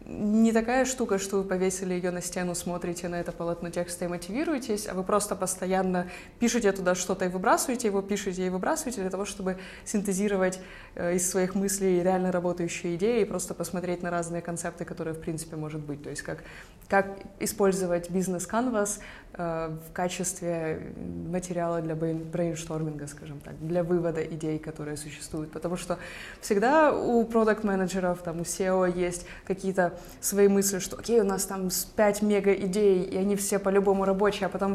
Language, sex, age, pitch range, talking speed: Russian, female, 20-39, 175-200 Hz, 160 wpm